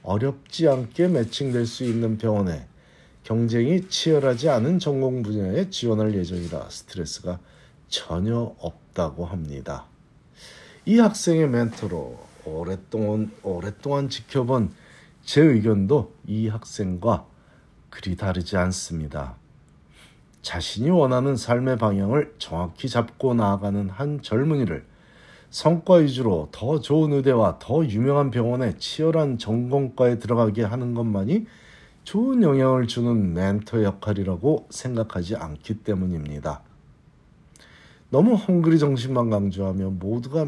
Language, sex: Korean, male